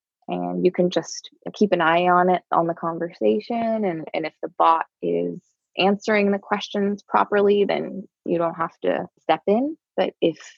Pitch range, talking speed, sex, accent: 165-200 Hz, 175 wpm, female, American